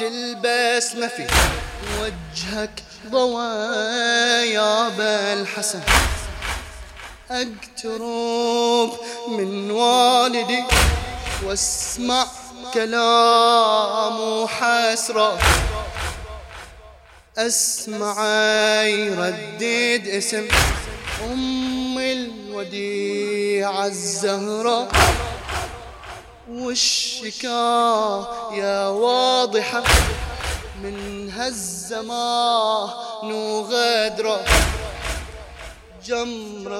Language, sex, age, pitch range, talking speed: English, male, 20-39, 205-240 Hz, 40 wpm